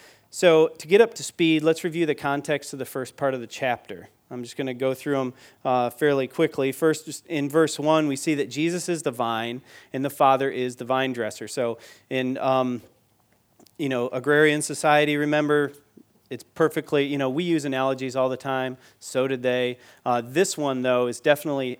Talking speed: 210 wpm